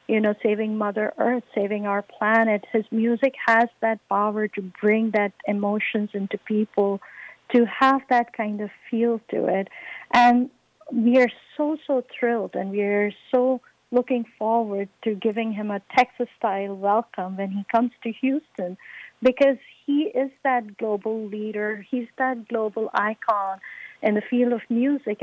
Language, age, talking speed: English, 50-69, 155 wpm